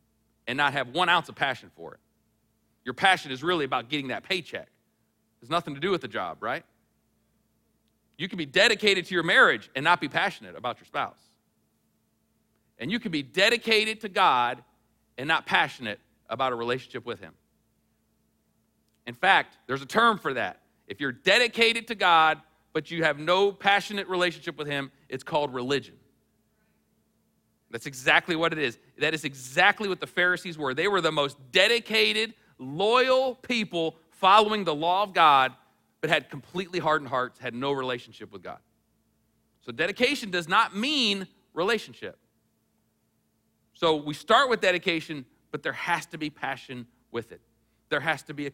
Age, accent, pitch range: 40-59, American, 130-190 Hz